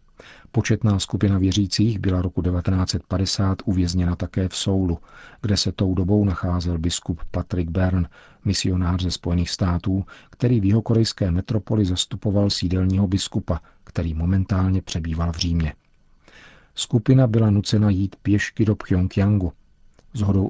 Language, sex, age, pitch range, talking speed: Czech, male, 40-59, 90-105 Hz, 130 wpm